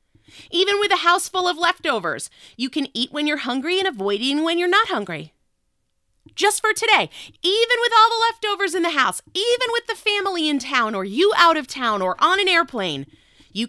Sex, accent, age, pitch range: female, American, 30-49, 230-375 Hz